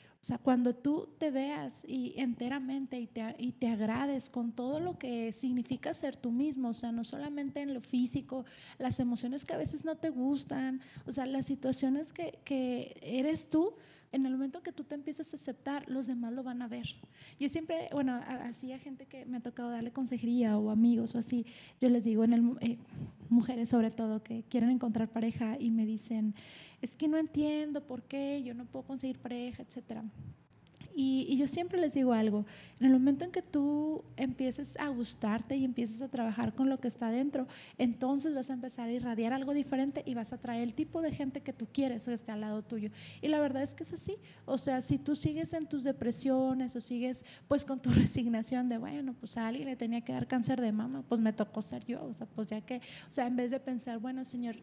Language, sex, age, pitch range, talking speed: Spanish, female, 30-49, 235-275 Hz, 225 wpm